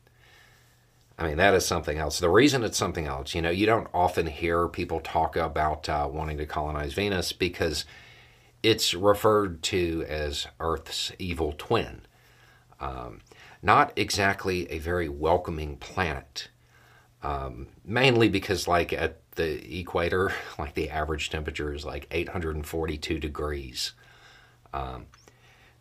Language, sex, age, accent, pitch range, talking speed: English, male, 50-69, American, 75-105 Hz, 135 wpm